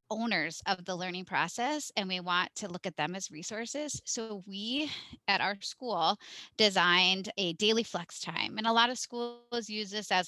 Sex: female